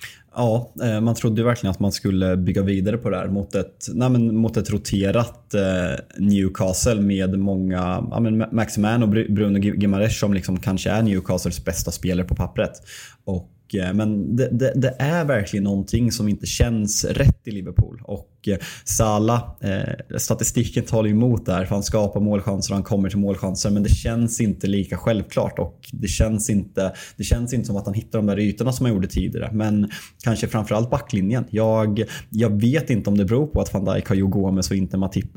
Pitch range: 95-115 Hz